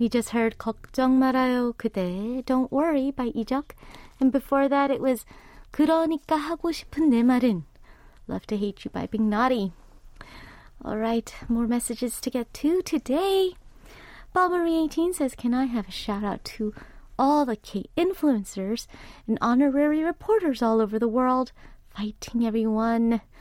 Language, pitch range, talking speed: English, 225-280 Hz, 135 wpm